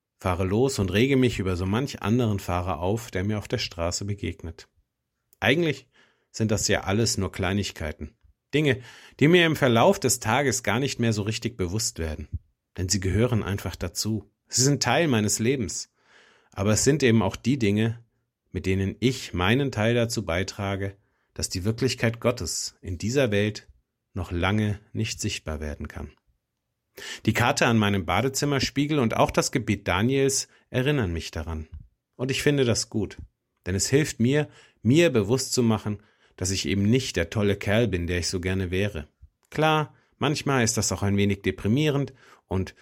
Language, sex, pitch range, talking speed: German, male, 95-125 Hz, 170 wpm